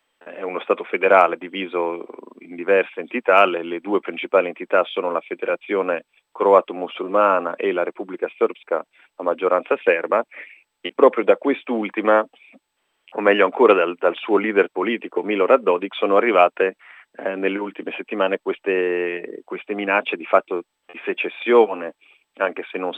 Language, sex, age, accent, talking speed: Italian, male, 30-49, native, 140 wpm